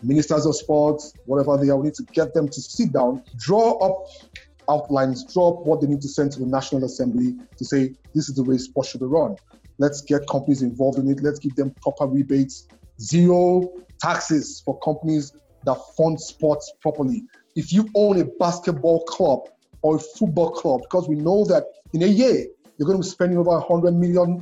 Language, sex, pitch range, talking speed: English, male, 155-210 Hz, 205 wpm